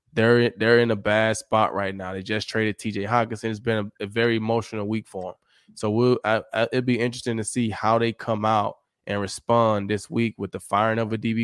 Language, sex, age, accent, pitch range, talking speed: English, male, 20-39, American, 100-110 Hz, 235 wpm